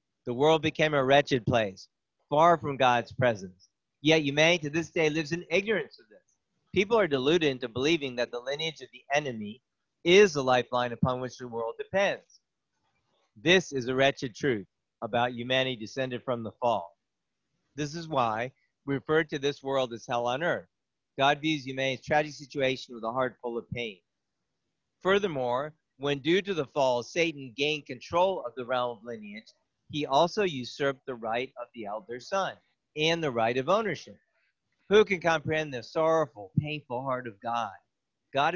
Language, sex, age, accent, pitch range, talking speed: English, male, 50-69, American, 125-160 Hz, 175 wpm